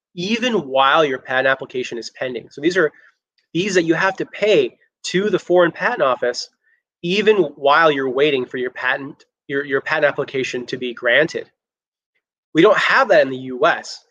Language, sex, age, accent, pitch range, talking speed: English, male, 30-49, American, 130-175 Hz, 180 wpm